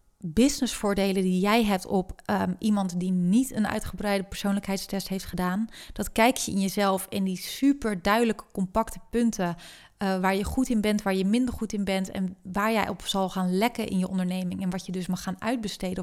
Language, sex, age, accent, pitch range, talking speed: Dutch, female, 30-49, Dutch, 185-215 Hz, 200 wpm